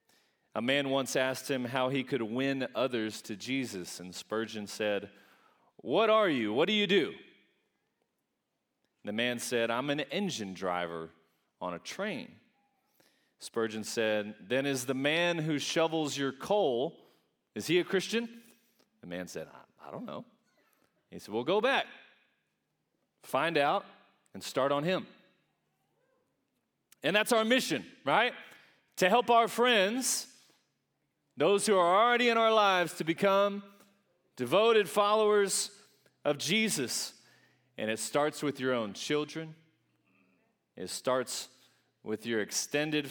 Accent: American